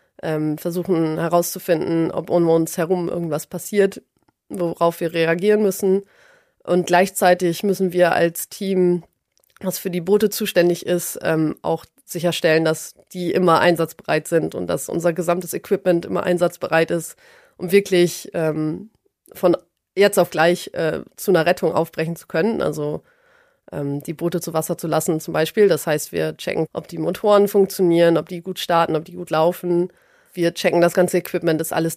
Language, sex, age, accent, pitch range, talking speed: German, female, 30-49, German, 165-185 Hz, 155 wpm